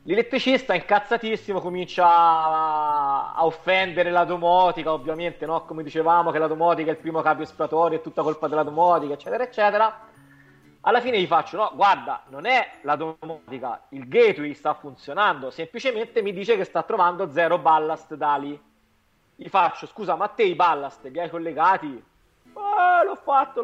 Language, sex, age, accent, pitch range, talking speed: Italian, male, 30-49, native, 160-240 Hz, 160 wpm